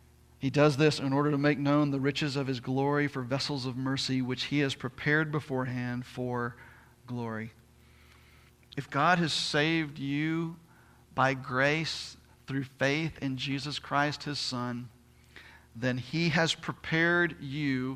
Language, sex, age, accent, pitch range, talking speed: English, male, 50-69, American, 115-155 Hz, 145 wpm